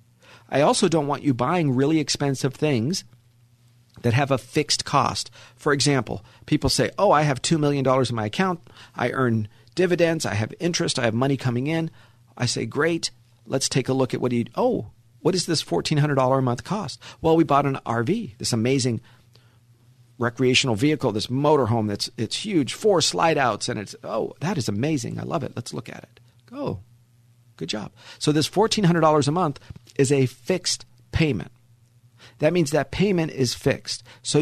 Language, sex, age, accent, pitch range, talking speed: English, male, 50-69, American, 120-150 Hz, 190 wpm